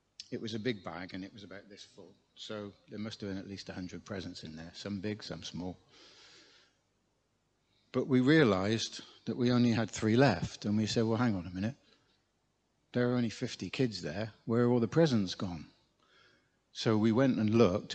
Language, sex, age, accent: English, male, 60-79, British